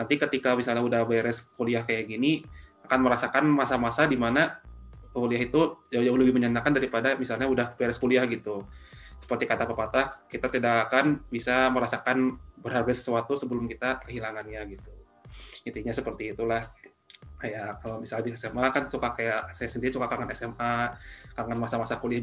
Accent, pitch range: native, 110-125 Hz